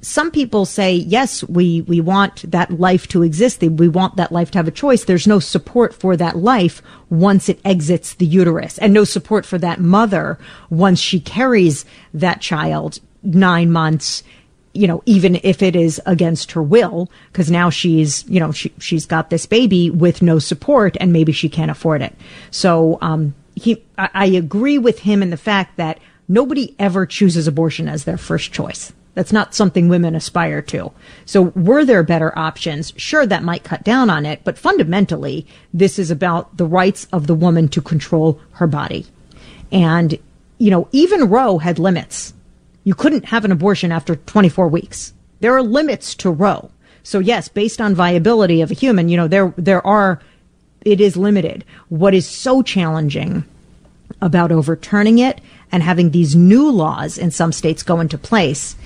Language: English